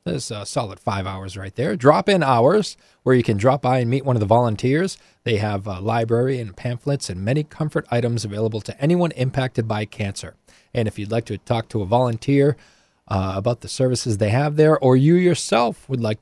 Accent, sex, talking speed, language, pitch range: American, male, 210 wpm, English, 105-145 Hz